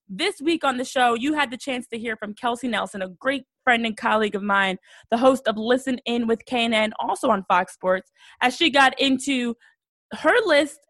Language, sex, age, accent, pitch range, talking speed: English, female, 20-39, American, 215-265 Hz, 210 wpm